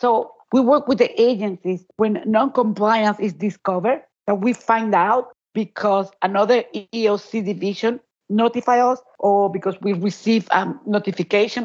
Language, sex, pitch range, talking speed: English, female, 185-225 Hz, 135 wpm